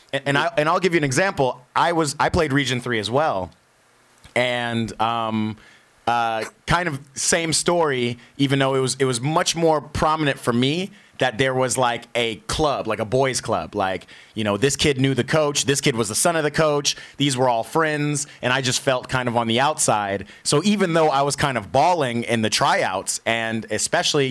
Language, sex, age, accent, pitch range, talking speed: English, male, 30-49, American, 120-145 Hz, 210 wpm